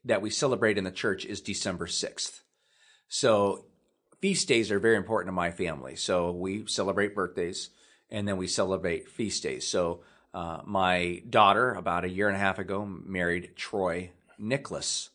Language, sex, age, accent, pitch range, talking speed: English, male, 30-49, American, 90-115 Hz, 165 wpm